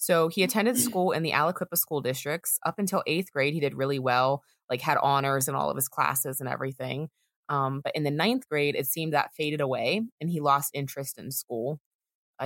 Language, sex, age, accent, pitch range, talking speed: English, female, 20-39, American, 140-175 Hz, 215 wpm